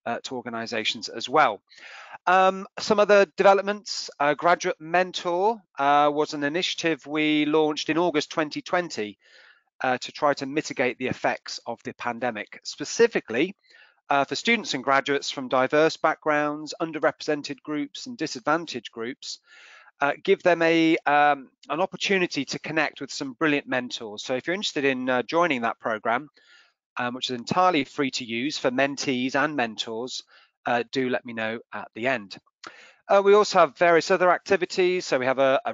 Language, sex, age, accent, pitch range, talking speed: English, male, 30-49, British, 130-175 Hz, 165 wpm